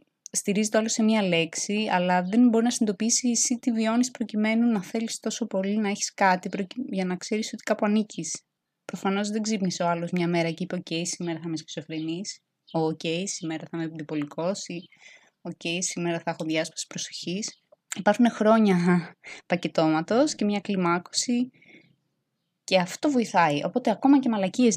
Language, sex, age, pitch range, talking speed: Greek, female, 20-39, 170-220 Hz, 160 wpm